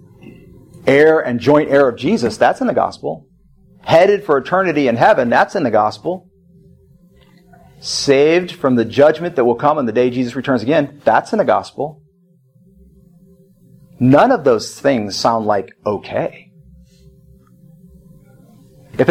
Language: English